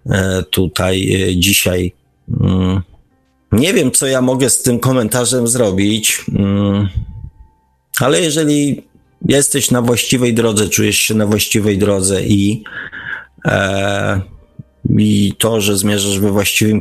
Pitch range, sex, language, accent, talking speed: 95-115 Hz, male, Polish, native, 105 wpm